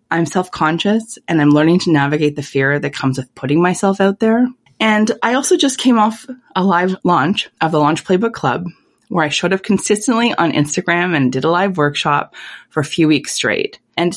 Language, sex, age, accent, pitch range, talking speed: English, female, 20-39, American, 160-225 Hz, 205 wpm